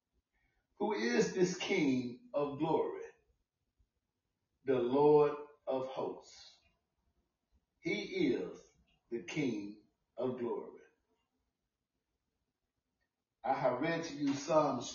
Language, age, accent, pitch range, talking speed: English, 60-79, American, 130-160 Hz, 90 wpm